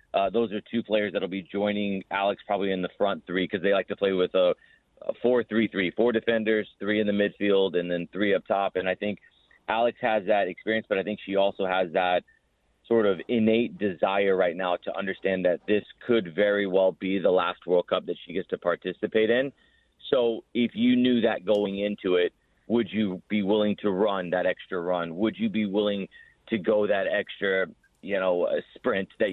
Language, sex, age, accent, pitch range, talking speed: English, male, 30-49, American, 95-115 Hz, 215 wpm